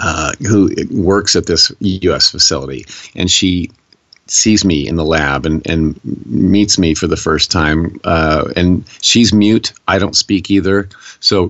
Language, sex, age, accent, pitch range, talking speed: English, male, 50-69, American, 85-100 Hz, 160 wpm